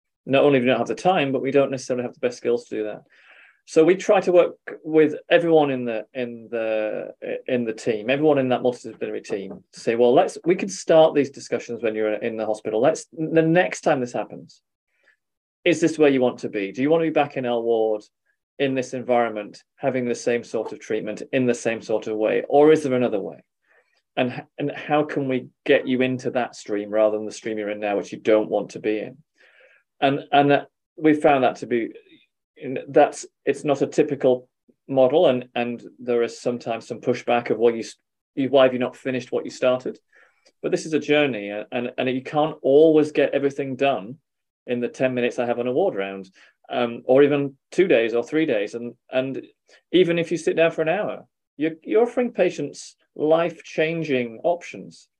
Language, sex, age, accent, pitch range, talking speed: English, male, 30-49, British, 120-155 Hz, 215 wpm